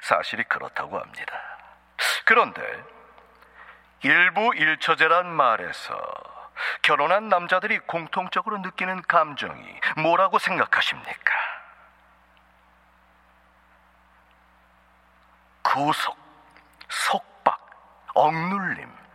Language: Korean